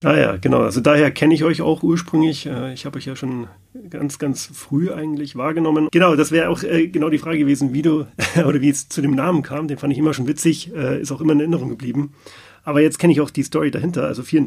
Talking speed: 245 wpm